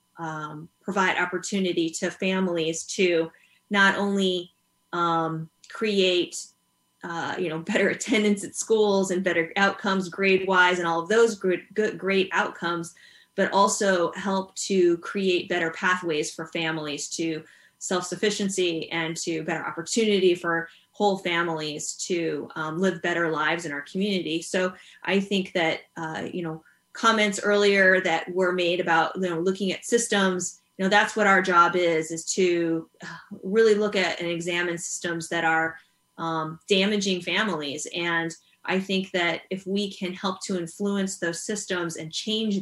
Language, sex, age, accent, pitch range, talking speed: English, female, 20-39, American, 165-195 Hz, 150 wpm